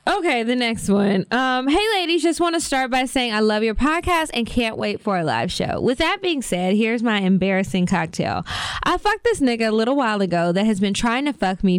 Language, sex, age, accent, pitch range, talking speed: English, female, 10-29, American, 190-250 Hz, 240 wpm